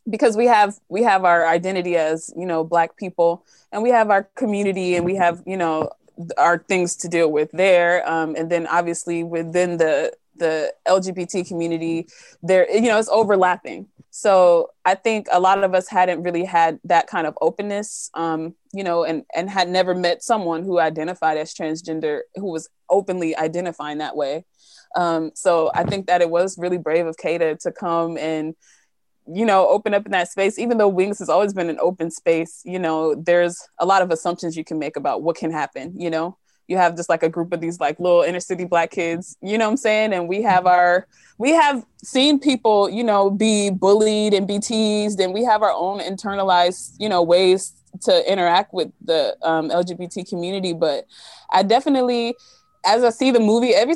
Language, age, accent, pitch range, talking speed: English, 20-39, American, 170-205 Hz, 200 wpm